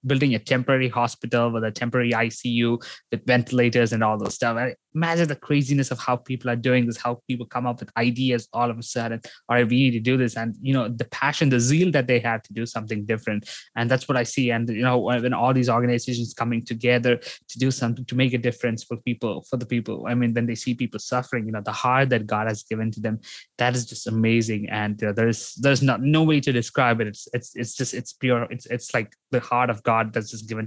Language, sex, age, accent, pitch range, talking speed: English, male, 20-39, Indian, 110-125 Hz, 245 wpm